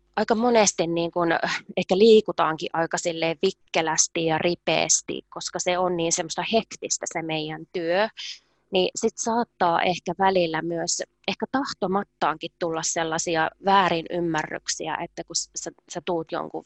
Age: 20-39